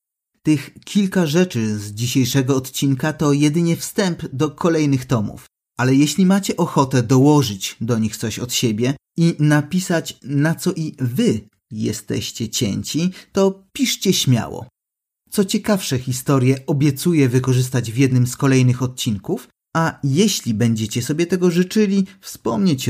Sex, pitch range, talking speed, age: male, 120-160 Hz, 130 wpm, 30-49